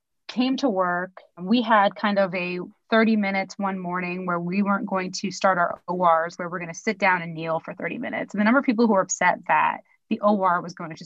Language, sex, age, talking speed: English, female, 30-49, 245 wpm